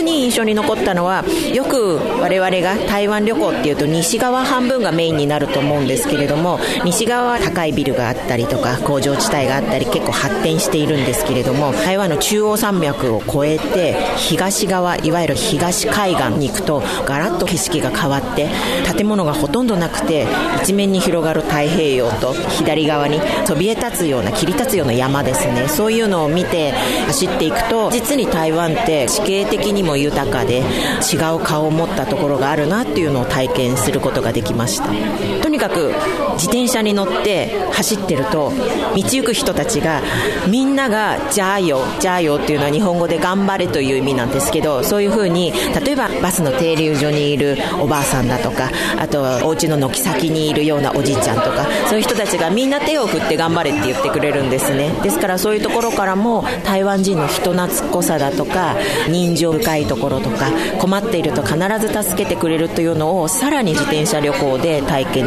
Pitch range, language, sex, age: 145-200 Hz, Japanese, female, 40-59